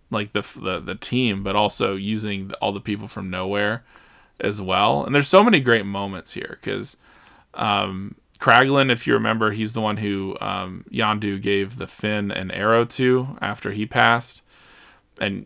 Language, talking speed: English, 170 wpm